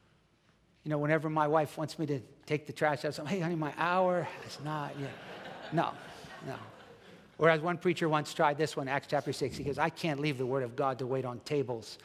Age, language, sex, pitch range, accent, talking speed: 60-79, English, male, 150-195 Hz, American, 230 wpm